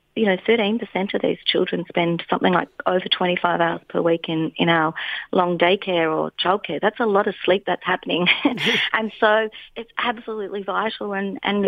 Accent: Australian